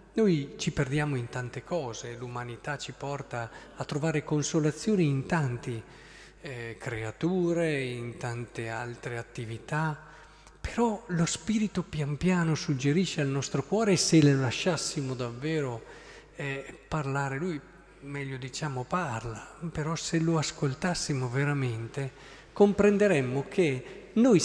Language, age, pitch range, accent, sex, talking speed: Italian, 40-59, 130-175 Hz, native, male, 115 wpm